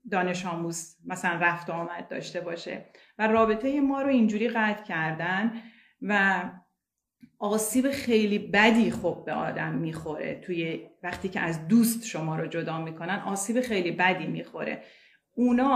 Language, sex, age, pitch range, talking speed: Persian, female, 40-59, 180-230 Hz, 135 wpm